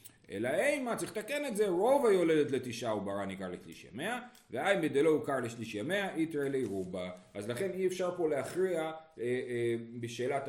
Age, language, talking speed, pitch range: 30-49, Hebrew, 175 wpm, 135-205 Hz